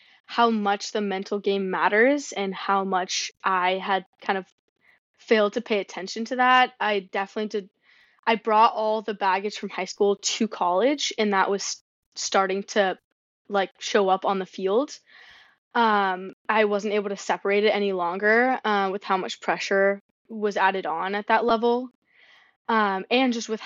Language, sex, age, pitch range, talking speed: English, female, 20-39, 190-225 Hz, 170 wpm